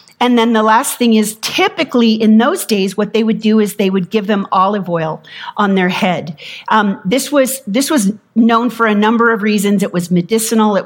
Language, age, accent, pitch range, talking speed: English, 40-59, American, 185-240 Hz, 215 wpm